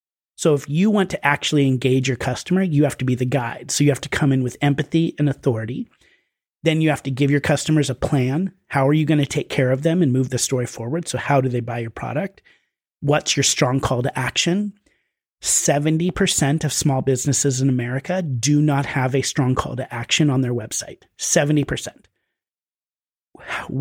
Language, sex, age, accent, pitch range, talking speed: English, male, 30-49, American, 130-155 Hz, 200 wpm